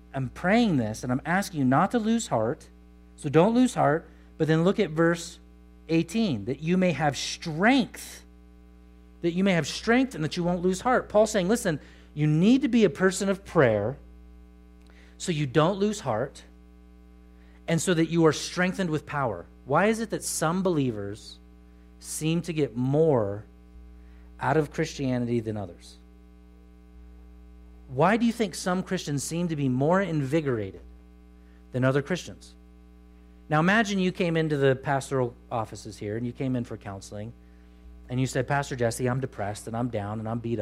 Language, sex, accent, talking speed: English, male, American, 175 wpm